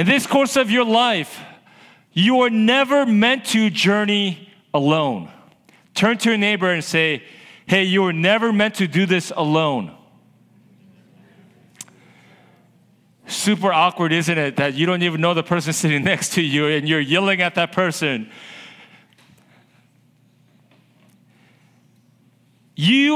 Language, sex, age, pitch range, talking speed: English, male, 40-59, 165-220 Hz, 130 wpm